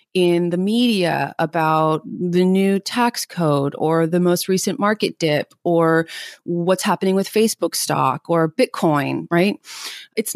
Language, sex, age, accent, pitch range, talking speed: English, female, 30-49, American, 165-205 Hz, 140 wpm